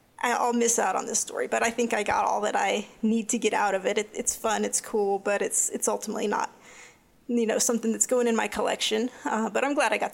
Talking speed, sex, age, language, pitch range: 260 wpm, female, 30-49, English, 215-245 Hz